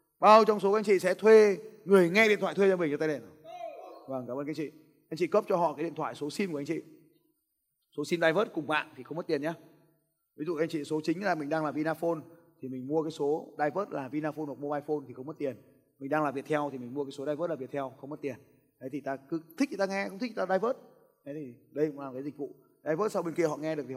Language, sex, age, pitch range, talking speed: Vietnamese, male, 20-39, 150-200 Hz, 290 wpm